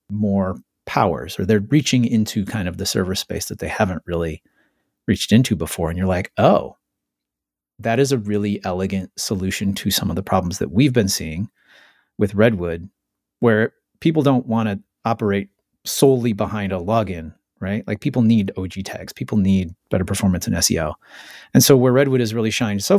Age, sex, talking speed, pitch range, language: 30-49, male, 180 wpm, 95-115 Hz, English